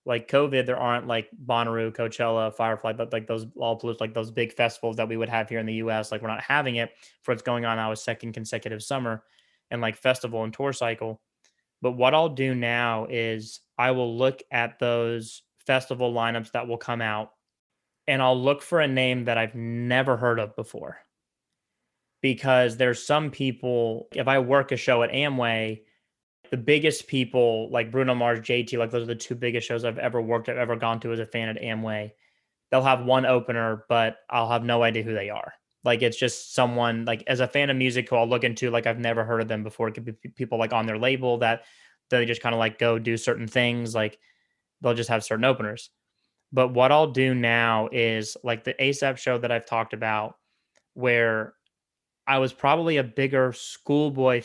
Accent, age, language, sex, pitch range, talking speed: American, 20-39, English, male, 115-130 Hz, 205 wpm